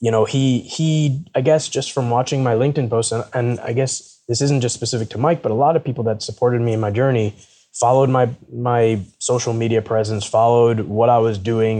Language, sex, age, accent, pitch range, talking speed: English, male, 20-39, American, 105-125 Hz, 225 wpm